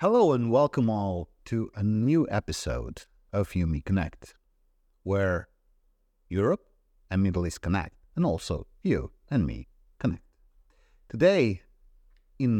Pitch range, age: 80-105 Hz, 50-69